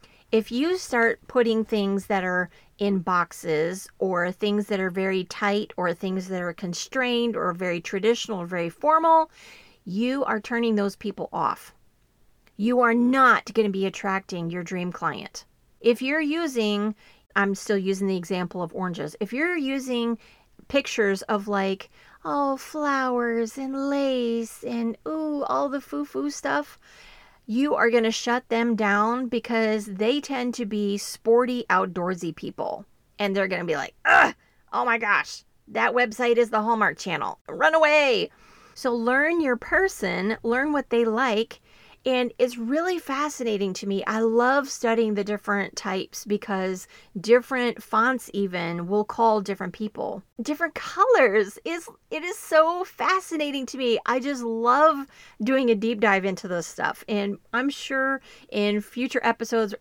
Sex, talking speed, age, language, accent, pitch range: female, 155 wpm, 30-49, English, American, 195-255 Hz